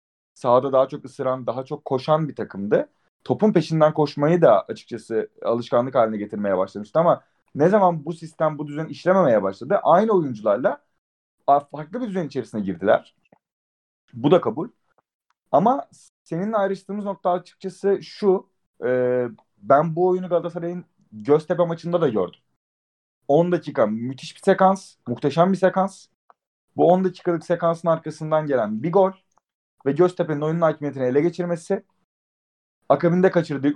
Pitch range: 130-180 Hz